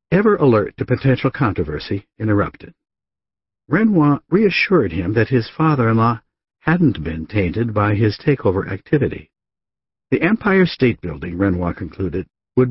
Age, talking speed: 60-79, 125 wpm